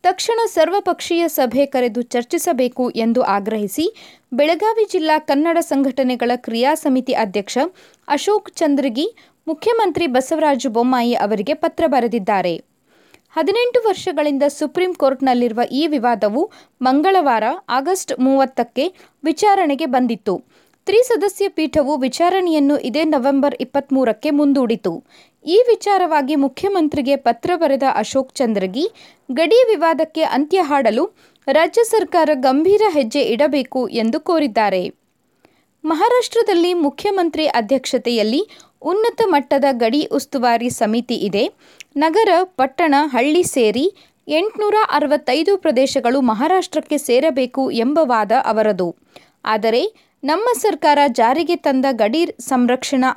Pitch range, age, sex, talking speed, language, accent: 255-345 Hz, 20-39, female, 95 wpm, Kannada, native